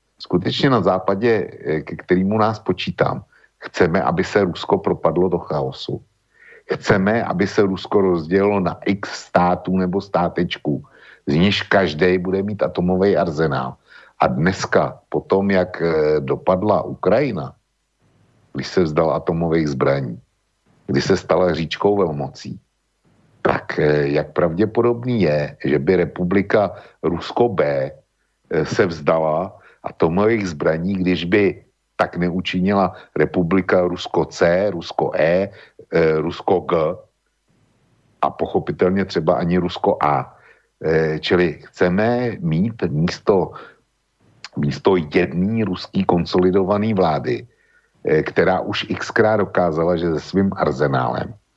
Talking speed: 110 wpm